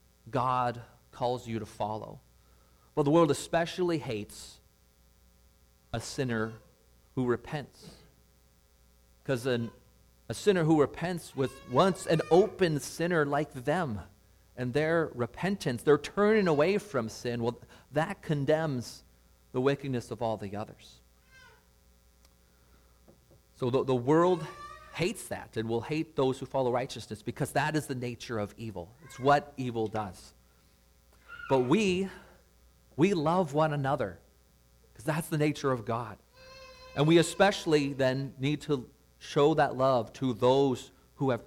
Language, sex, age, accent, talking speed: English, male, 40-59, American, 135 wpm